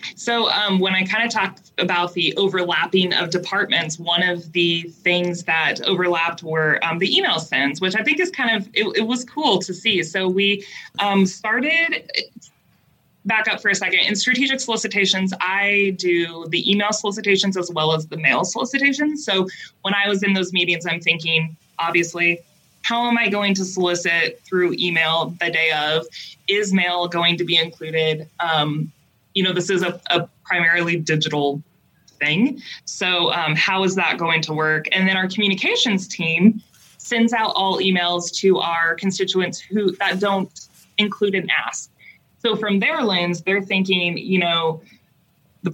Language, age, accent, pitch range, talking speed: English, 20-39, American, 170-200 Hz, 170 wpm